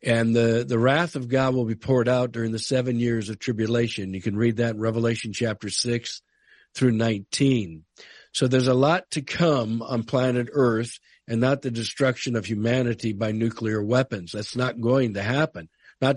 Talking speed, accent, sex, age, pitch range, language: 185 wpm, American, male, 50-69, 115-140 Hz, English